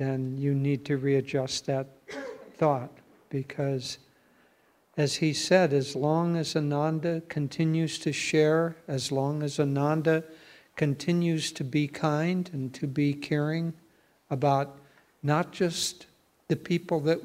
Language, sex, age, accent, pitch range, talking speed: English, male, 60-79, American, 140-160 Hz, 125 wpm